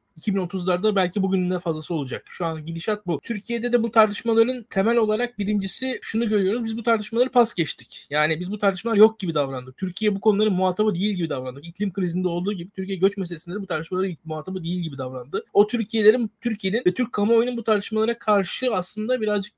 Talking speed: 195 wpm